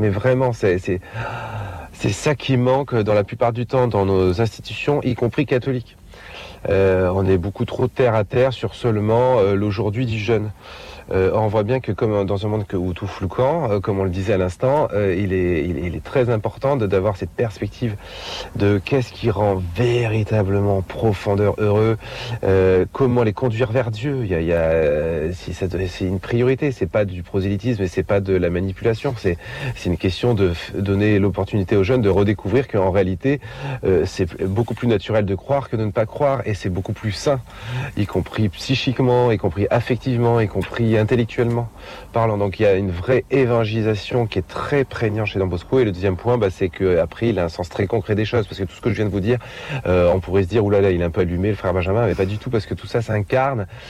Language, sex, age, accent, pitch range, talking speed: French, male, 40-59, French, 95-120 Hz, 220 wpm